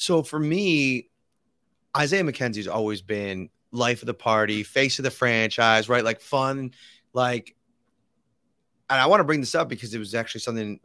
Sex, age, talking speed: male, 30-49, 170 wpm